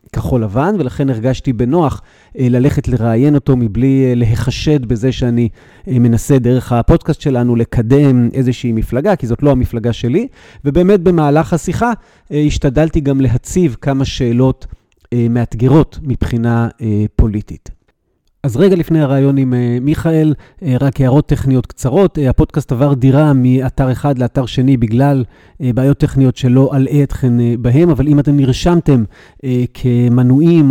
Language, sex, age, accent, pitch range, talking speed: Hebrew, male, 30-49, native, 120-145 Hz, 125 wpm